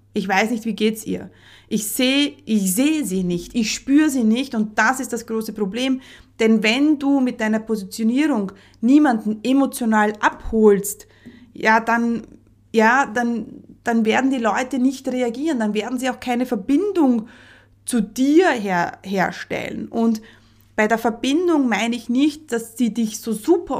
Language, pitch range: German, 200-255 Hz